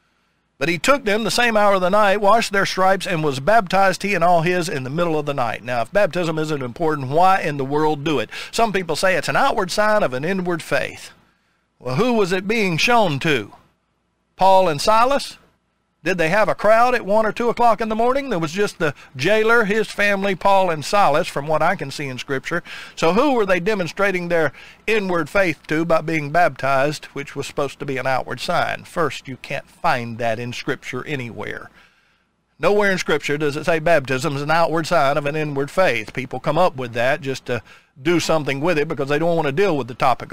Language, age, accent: English, 50-69, American